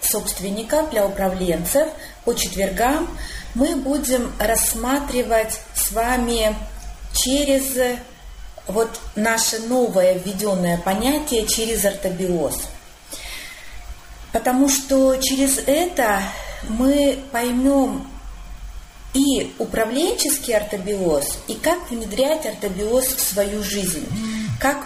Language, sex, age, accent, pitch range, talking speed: Russian, female, 30-49, native, 205-275 Hz, 85 wpm